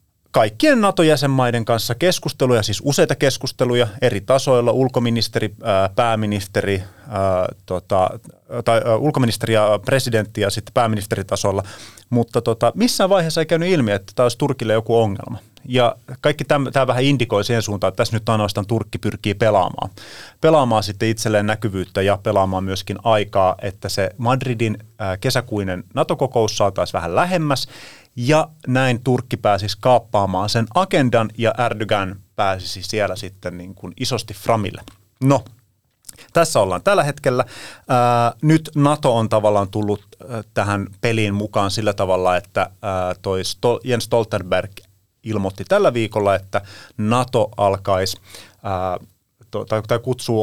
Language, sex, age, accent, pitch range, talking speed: Finnish, male, 30-49, native, 100-125 Hz, 120 wpm